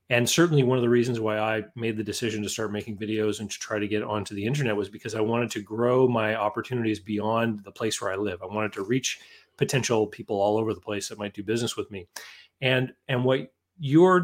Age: 30-49